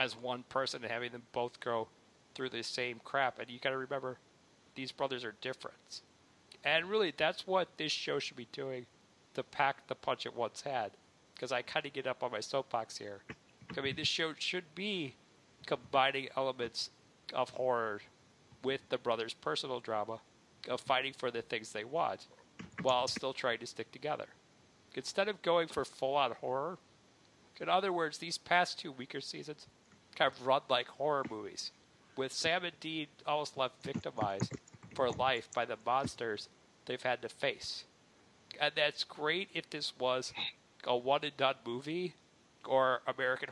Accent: American